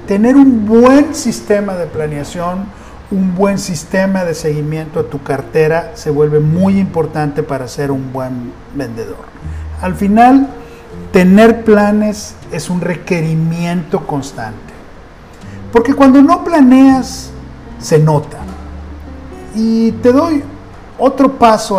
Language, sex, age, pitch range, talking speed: Spanish, male, 40-59, 145-205 Hz, 115 wpm